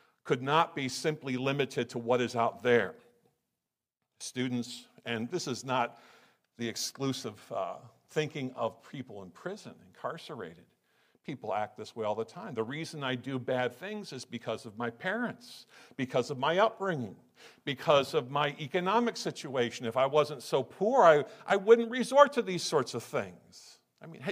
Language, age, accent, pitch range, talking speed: English, 50-69, American, 135-210 Hz, 165 wpm